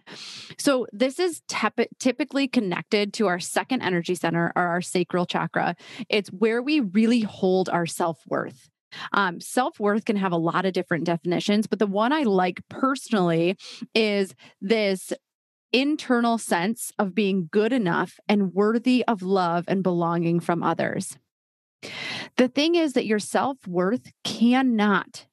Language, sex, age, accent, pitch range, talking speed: English, female, 30-49, American, 185-235 Hz, 135 wpm